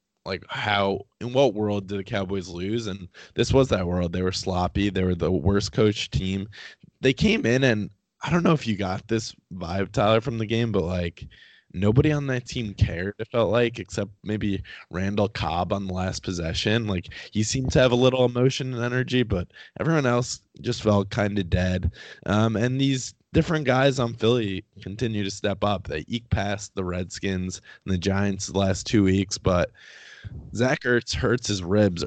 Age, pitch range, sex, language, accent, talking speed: 20-39, 95-115 Hz, male, English, American, 190 wpm